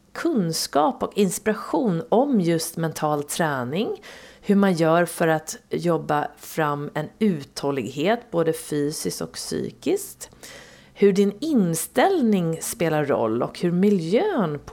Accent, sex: native, female